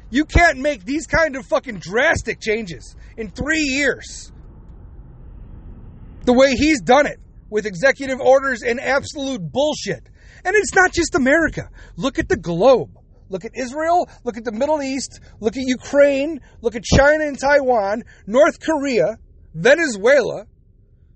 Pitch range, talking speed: 205-285 Hz, 145 wpm